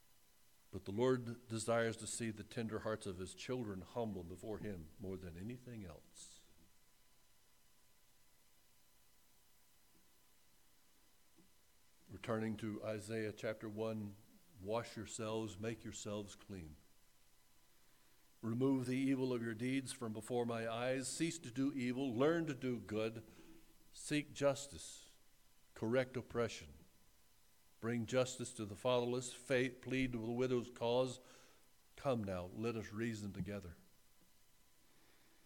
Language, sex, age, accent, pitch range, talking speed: English, male, 60-79, American, 100-120 Hz, 115 wpm